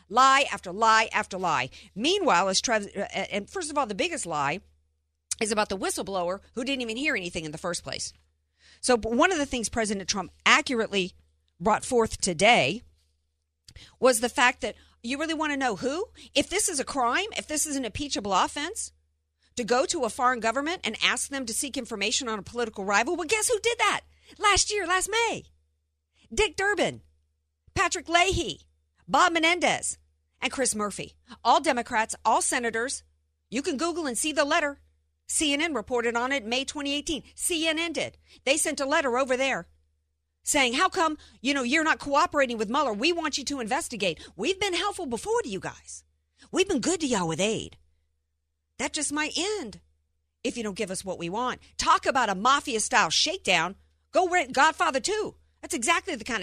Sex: female